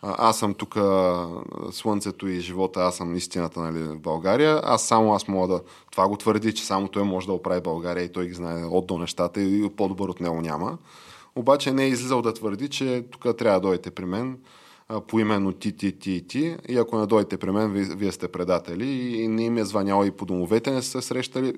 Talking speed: 220 wpm